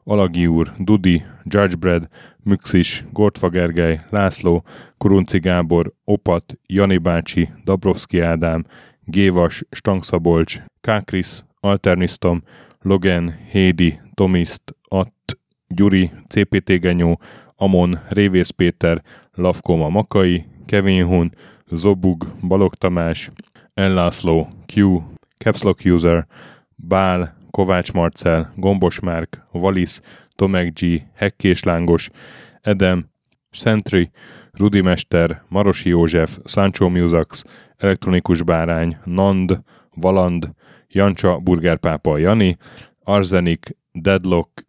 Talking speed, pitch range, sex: 85 wpm, 85-100 Hz, male